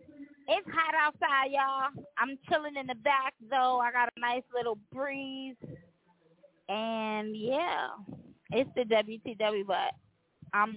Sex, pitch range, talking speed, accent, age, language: female, 190-260 Hz, 130 wpm, American, 20-39, English